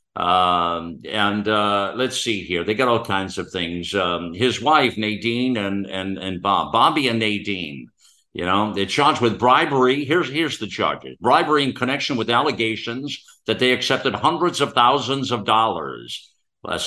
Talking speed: 165 wpm